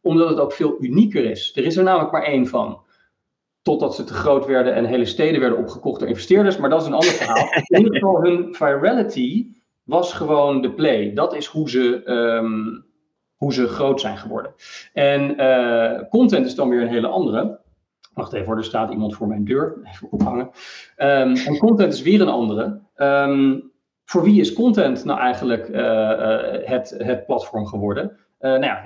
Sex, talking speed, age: male, 180 wpm, 40-59